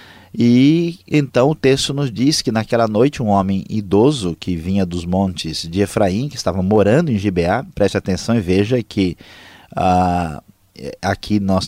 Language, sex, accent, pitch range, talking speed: Portuguese, male, Brazilian, 95-130 Hz, 155 wpm